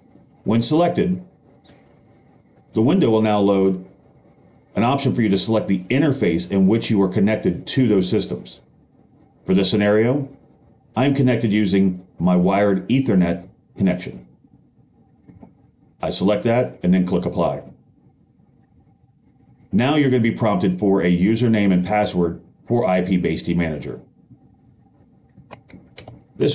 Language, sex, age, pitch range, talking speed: English, male, 40-59, 90-115 Hz, 125 wpm